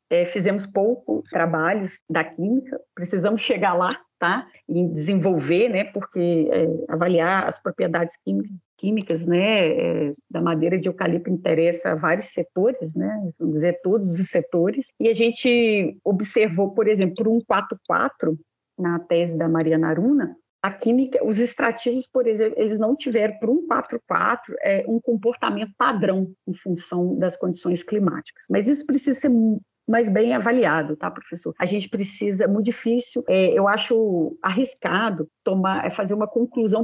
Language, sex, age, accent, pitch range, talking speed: Portuguese, female, 30-49, Brazilian, 175-230 Hz, 150 wpm